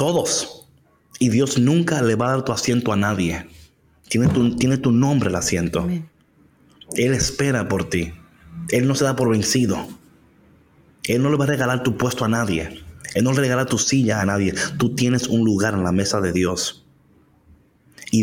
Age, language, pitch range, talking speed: 30-49, Spanish, 95-125 Hz, 190 wpm